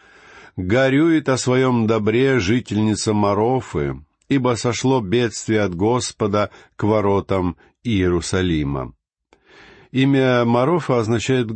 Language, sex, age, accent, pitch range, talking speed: Russian, male, 50-69, native, 90-125 Hz, 90 wpm